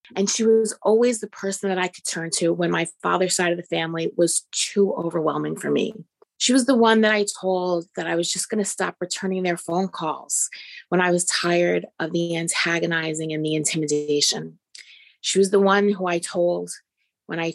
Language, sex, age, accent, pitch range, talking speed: English, female, 30-49, American, 160-195 Hz, 200 wpm